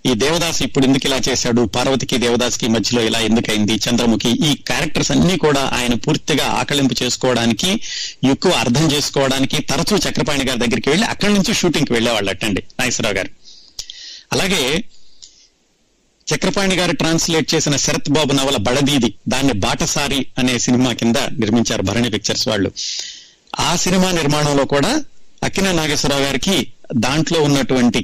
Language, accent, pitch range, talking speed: Telugu, native, 120-150 Hz, 135 wpm